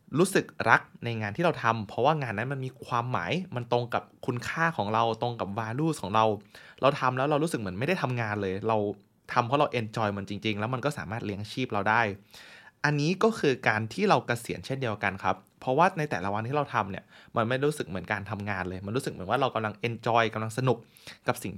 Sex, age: male, 20-39